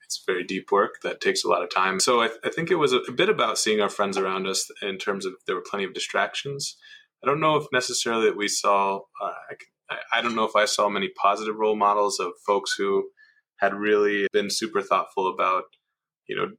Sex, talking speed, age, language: male, 230 wpm, 20-39, English